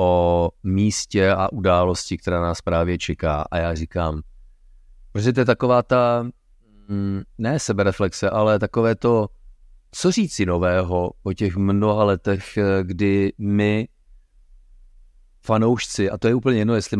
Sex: male